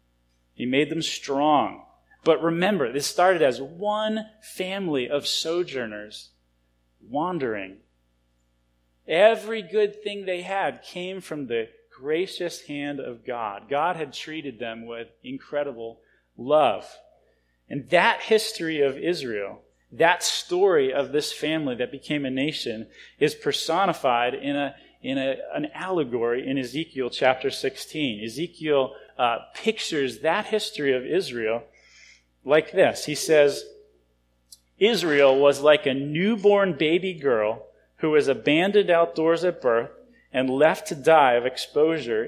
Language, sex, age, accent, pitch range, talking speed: English, male, 30-49, American, 130-190 Hz, 125 wpm